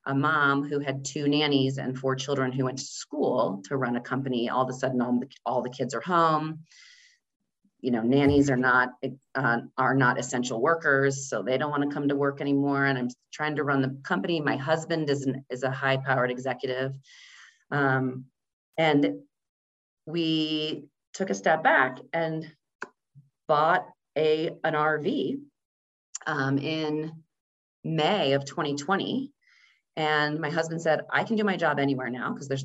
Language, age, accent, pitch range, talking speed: English, 30-49, American, 135-165 Hz, 170 wpm